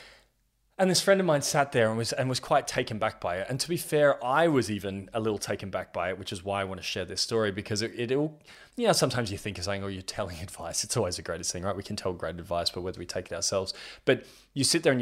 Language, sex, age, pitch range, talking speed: English, male, 20-39, 100-135 Hz, 300 wpm